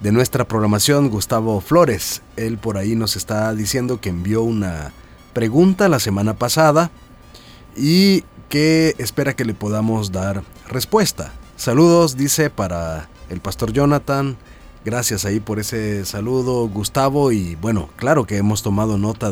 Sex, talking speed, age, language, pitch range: male, 140 wpm, 40-59, Spanish, 105-135 Hz